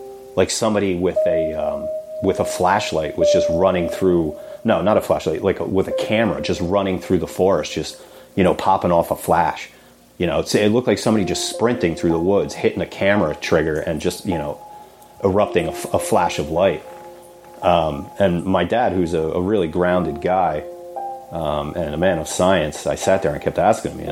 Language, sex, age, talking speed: English, male, 30-49, 205 wpm